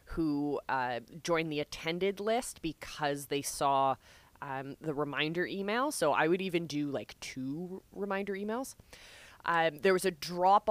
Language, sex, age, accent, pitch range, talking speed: English, female, 20-39, American, 145-195 Hz, 150 wpm